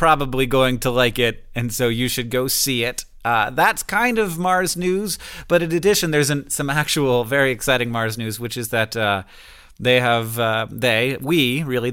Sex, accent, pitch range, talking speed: male, American, 115-145 Hz, 195 wpm